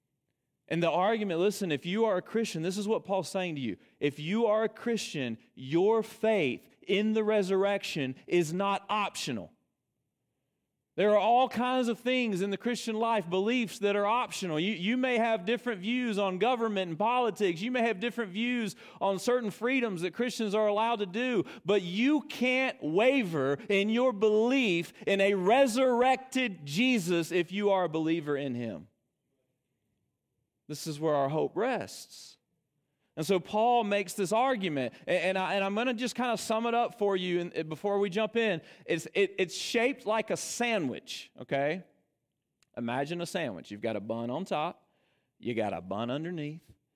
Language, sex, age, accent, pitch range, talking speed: English, male, 30-49, American, 150-230 Hz, 175 wpm